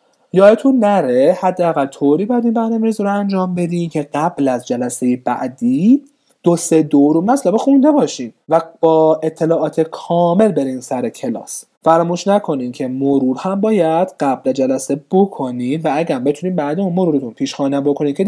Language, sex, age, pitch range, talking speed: Persian, male, 30-49, 140-195 Hz, 160 wpm